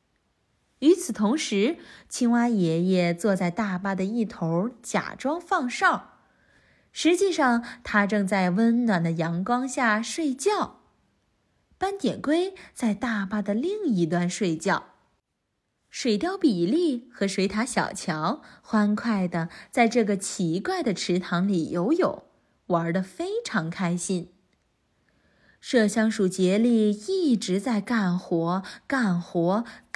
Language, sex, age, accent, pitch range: Chinese, female, 20-39, native, 185-250 Hz